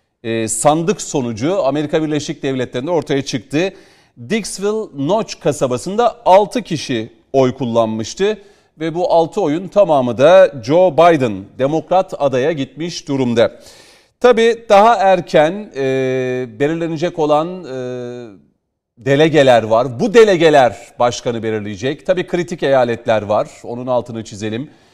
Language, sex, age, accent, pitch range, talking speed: Turkish, male, 40-59, native, 130-195 Hz, 115 wpm